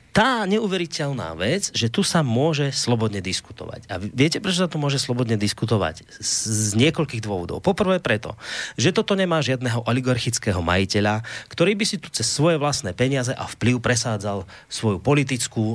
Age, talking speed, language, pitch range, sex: 30-49, 155 wpm, Slovak, 110-165 Hz, male